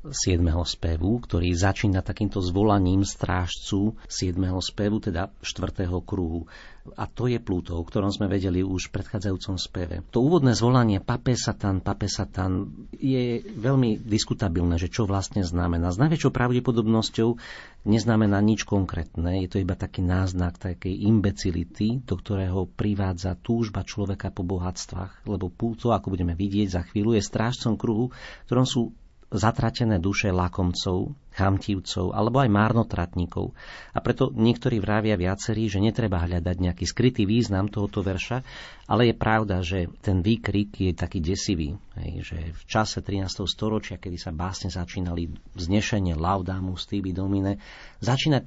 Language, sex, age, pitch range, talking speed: Slovak, male, 40-59, 95-115 Hz, 140 wpm